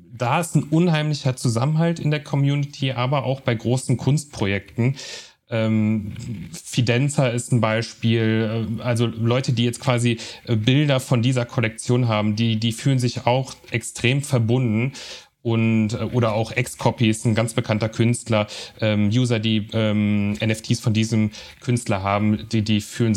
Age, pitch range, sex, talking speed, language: 30-49, 115-135 Hz, male, 145 wpm, German